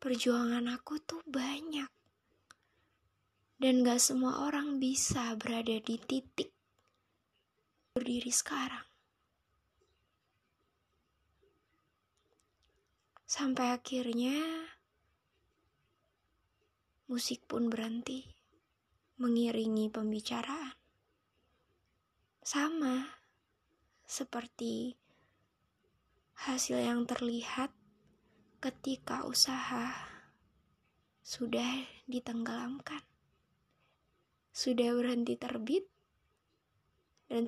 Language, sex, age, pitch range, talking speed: Indonesian, female, 20-39, 240-270 Hz, 55 wpm